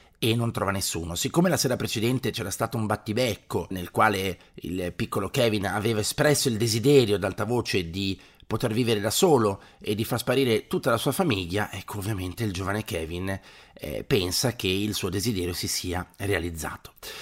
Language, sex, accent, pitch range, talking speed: Italian, male, native, 95-120 Hz, 180 wpm